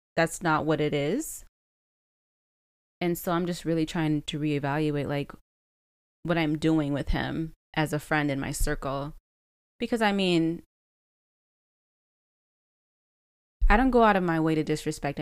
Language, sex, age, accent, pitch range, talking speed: English, female, 20-39, American, 150-180 Hz, 145 wpm